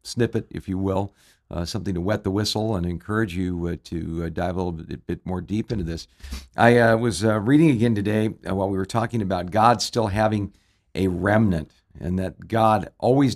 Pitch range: 90-110 Hz